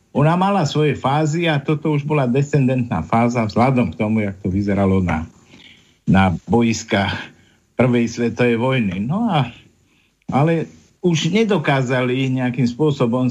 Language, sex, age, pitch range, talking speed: Slovak, male, 50-69, 115-150 Hz, 130 wpm